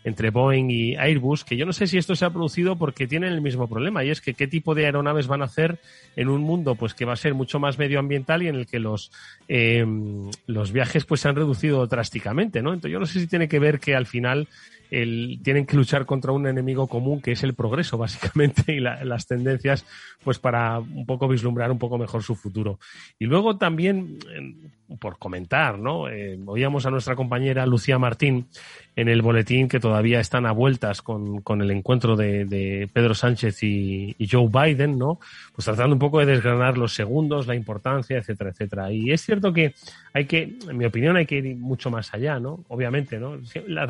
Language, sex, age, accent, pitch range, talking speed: Spanish, male, 30-49, Spanish, 115-145 Hz, 215 wpm